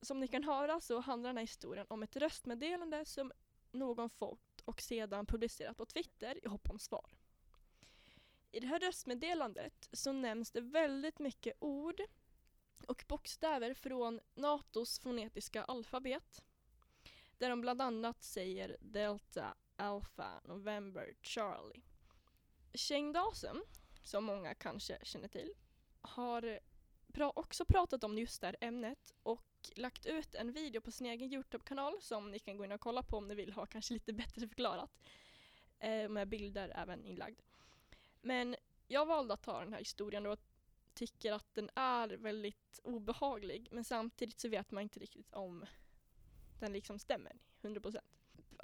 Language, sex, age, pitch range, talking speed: Swedish, female, 10-29, 215-270 Hz, 150 wpm